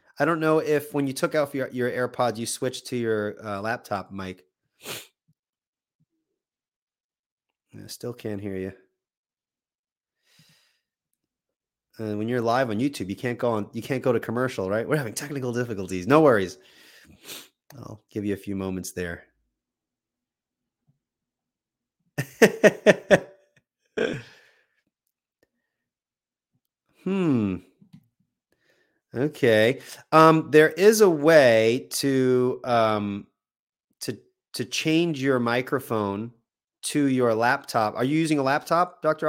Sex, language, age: male, English, 30-49